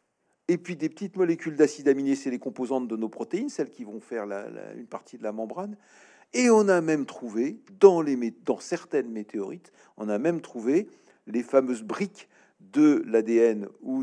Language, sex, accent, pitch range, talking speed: French, male, French, 120-185 Hz, 190 wpm